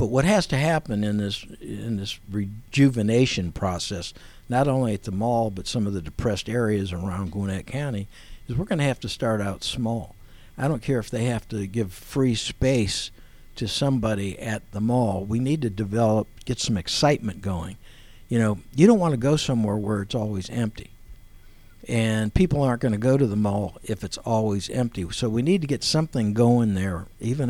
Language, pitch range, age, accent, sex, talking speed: English, 100-130 Hz, 60-79, American, male, 200 wpm